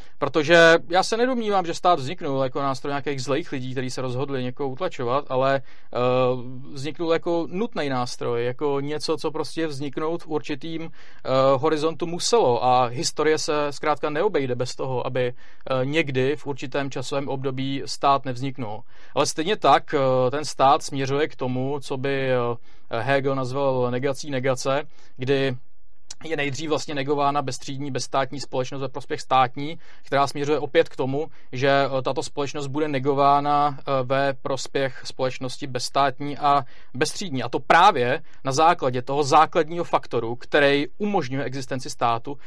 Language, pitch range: Czech, 130-150 Hz